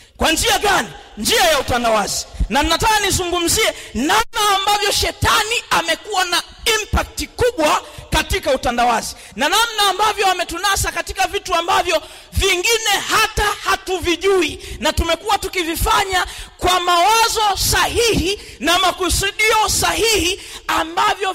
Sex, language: male, Swahili